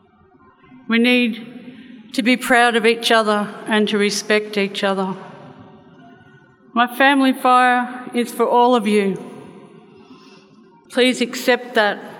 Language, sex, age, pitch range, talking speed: English, female, 50-69, 195-235 Hz, 120 wpm